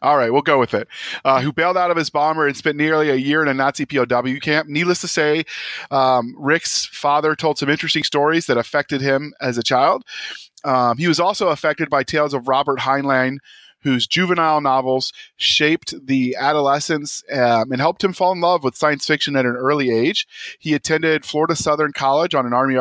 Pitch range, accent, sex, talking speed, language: 130-150 Hz, American, male, 205 wpm, English